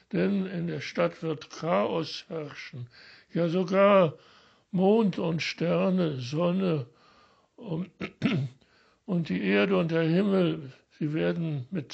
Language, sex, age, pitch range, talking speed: German, male, 60-79, 150-185 Hz, 110 wpm